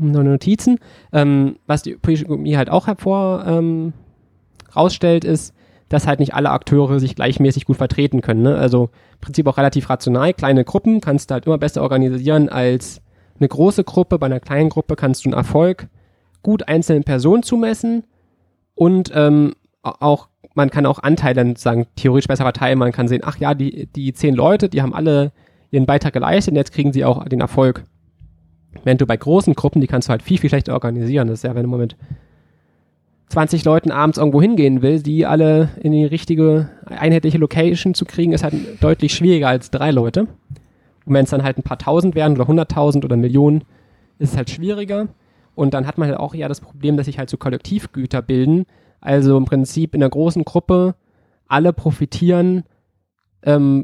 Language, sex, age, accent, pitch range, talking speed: German, male, 20-39, German, 130-155 Hz, 190 wpm